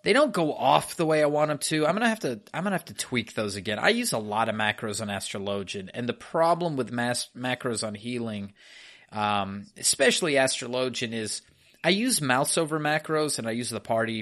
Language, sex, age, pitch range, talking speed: English, male, 30-49, 105-140 Hz, 215 wpm